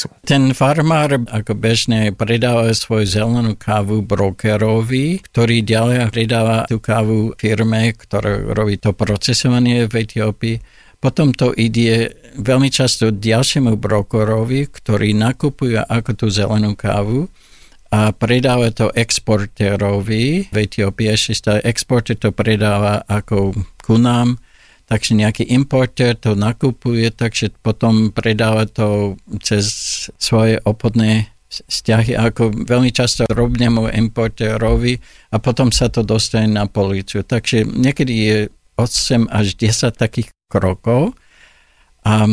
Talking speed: 115 wpm